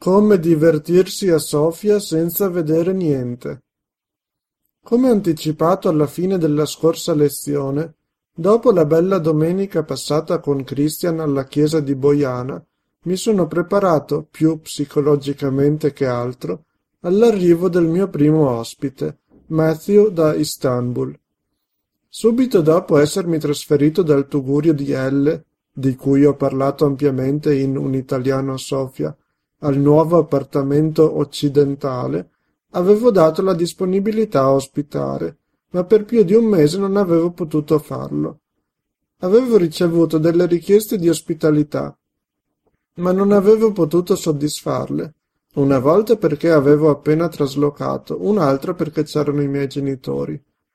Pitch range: 145-175 Hz